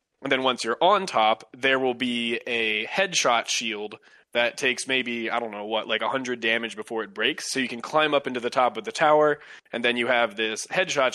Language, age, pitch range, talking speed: English, 20-39, 110-130 Hz, 225 wpm